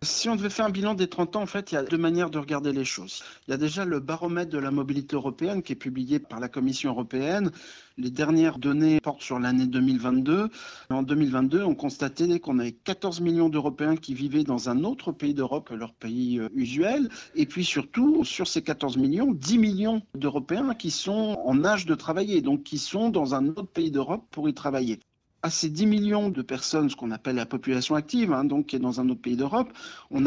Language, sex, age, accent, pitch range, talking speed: French, male, 50-69, French, 130-180 Hz, 225 wpm